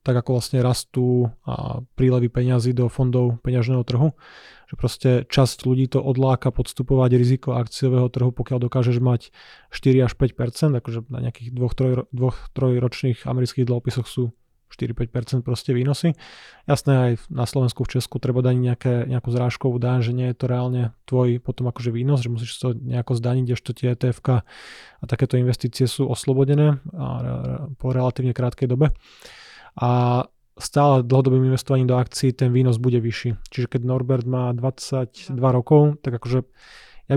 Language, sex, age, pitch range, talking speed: Slovak, male, 20-39, 125-135 Hz, 155 wpm